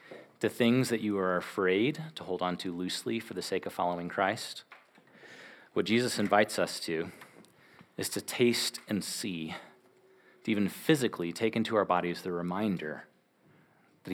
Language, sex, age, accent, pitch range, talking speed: English, male, 30-49, American, 90-120 Hz, 155 wpm